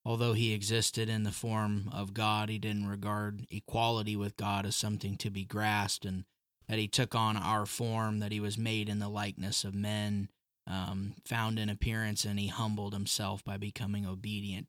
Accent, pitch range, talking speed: American, 100-115 Hz, 190 wpm